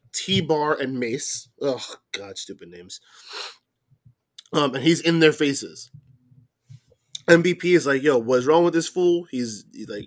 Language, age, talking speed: English, 20-39, 155 wpm